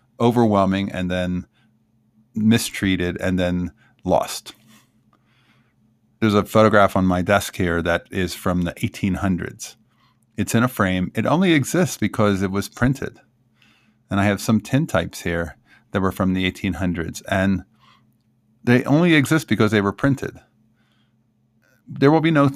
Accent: American